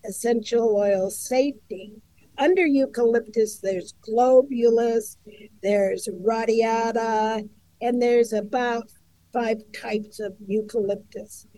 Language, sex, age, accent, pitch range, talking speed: English, female, 50-69, American, 210-235 Hz, 85 wpm